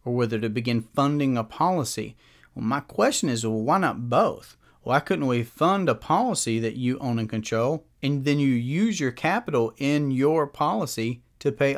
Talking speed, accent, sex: 190 wpm, American, male